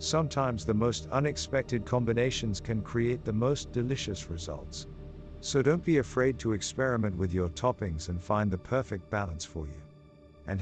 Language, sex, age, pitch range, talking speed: English, male, 50-69, 80-130 Hz, 160 wpm